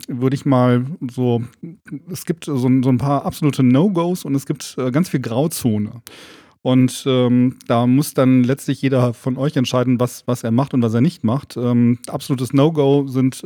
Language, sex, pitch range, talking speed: German, male, 115-135 Hz, 180 wpm